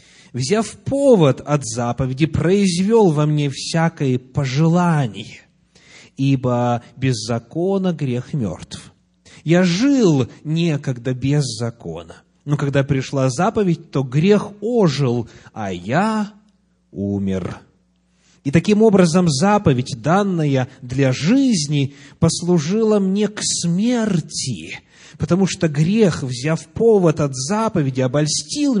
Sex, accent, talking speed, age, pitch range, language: male, native, 100 wpm, 30-49, 130-180 Hz, Russian